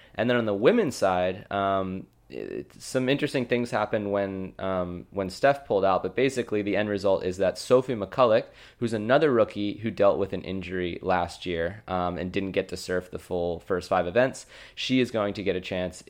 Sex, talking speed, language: male, 205 wpm, English